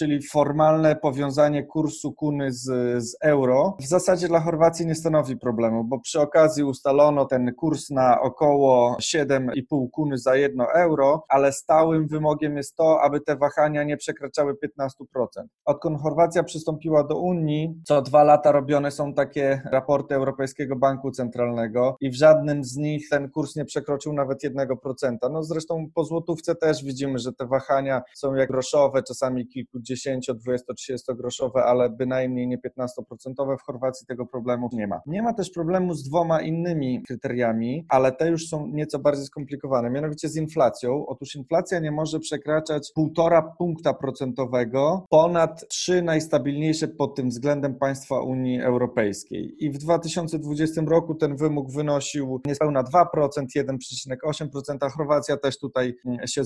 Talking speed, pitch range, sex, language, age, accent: 150 wpm, 130-155 Hz, male, Polish, 20-39, native